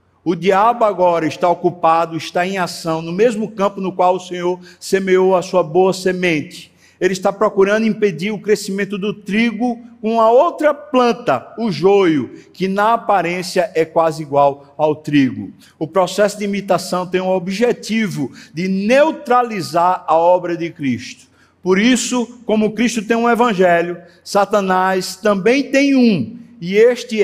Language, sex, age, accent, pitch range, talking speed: Portuguese, male, 60-79, Brazilian, 155-215 Hz, 150 wpm